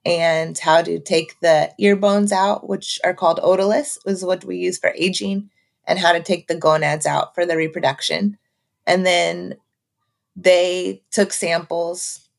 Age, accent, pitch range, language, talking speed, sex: 30-49, American, 155-190 Hz, English, 160 wpm, female